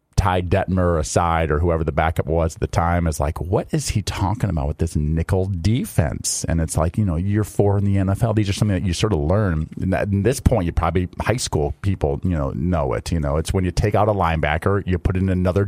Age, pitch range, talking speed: 40-59, 85-110 Hz, 250 wpm